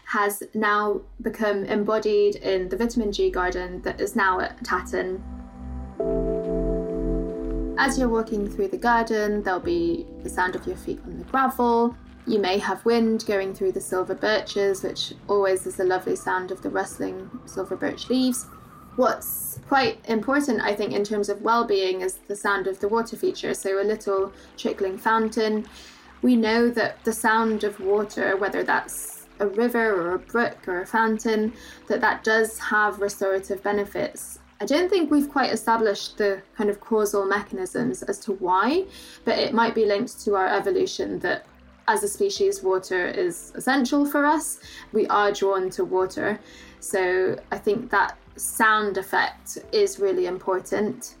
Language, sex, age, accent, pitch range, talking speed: English, female, 10-29, British, 190-235 Hz, 165 wpm